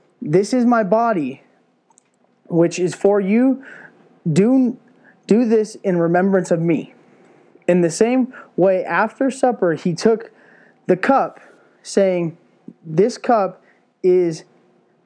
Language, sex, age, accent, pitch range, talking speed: English, male, 20-39, American, 175-225 Hz, 115 wpm